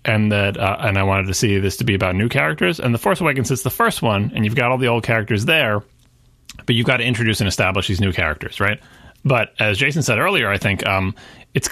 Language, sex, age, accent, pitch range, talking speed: English, male, 30-49, American, 95-125 Hz, 255 wpm